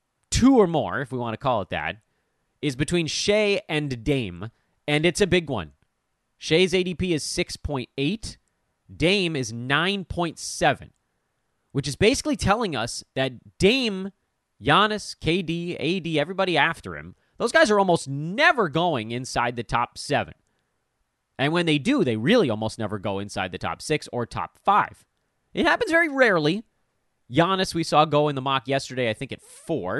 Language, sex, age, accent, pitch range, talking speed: English, male, 30-49, American, 115-175 Hz, 165 wpm